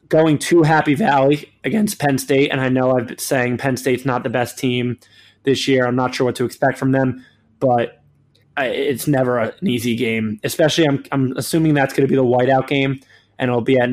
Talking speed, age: 215 wpm, 20-39